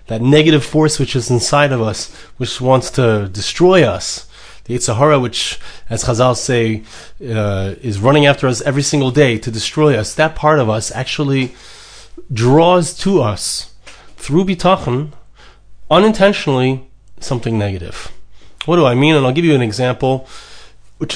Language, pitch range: English, 115-155 Hz